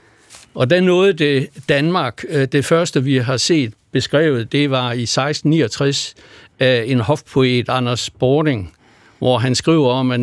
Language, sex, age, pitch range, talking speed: Danish, male, 60-79, 120-145 Hz, 145 wpm